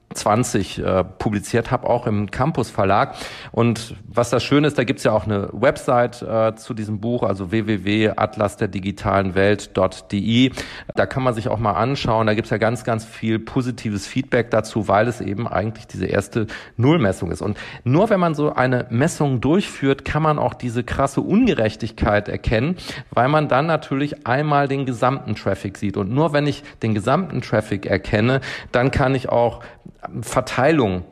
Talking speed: 170 wpm